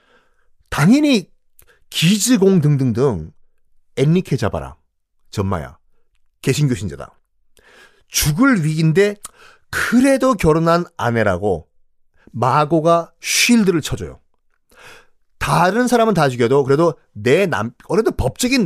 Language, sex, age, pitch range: Korean, male, 40-59, 120-195 Hz